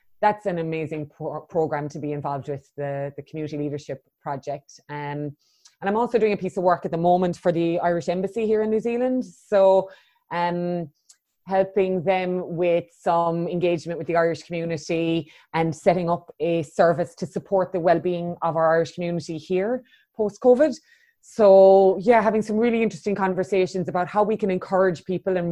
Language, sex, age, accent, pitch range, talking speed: English, female, 20-39, Irish, 155-190 Hz, 175 wpm